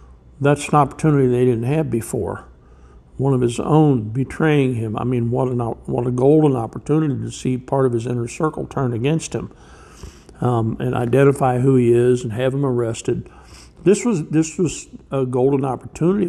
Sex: male